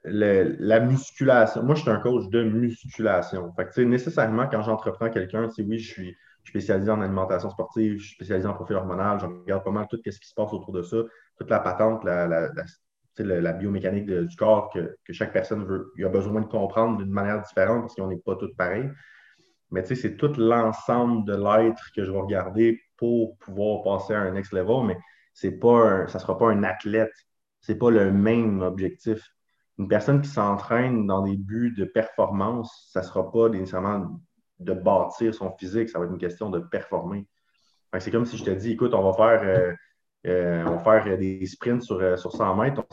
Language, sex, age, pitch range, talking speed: French, male, 30-49, 95-115 Hz, 215 wpm